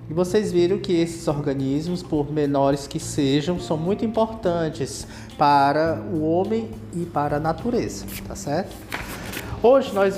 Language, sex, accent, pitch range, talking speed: Portuguese, male, Brazilian, 145-190 Hz, 140 wpm